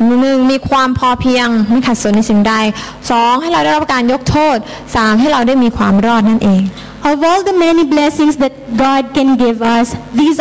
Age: 20-39